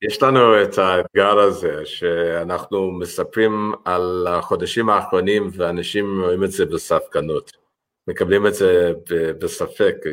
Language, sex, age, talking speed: Hebrew, male, 50-69, 120 wpm